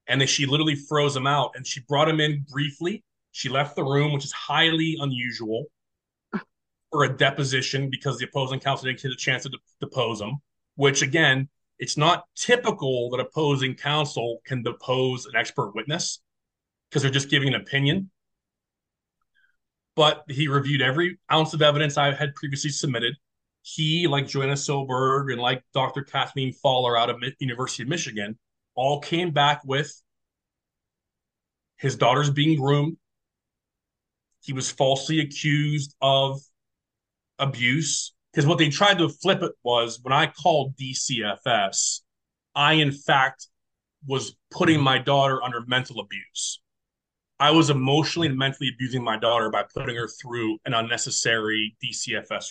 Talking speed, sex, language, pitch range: 150 wpm, male, English, 125-150 Hz